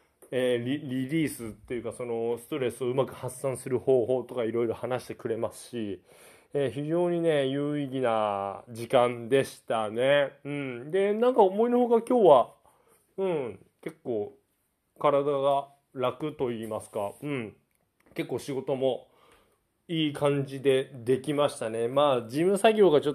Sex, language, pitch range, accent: male, Japanese, 125-165 Hz, native